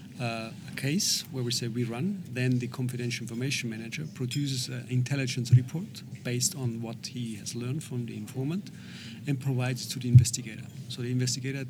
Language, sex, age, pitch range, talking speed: English, male, 40-59, 115-135 Hz, 175 wpm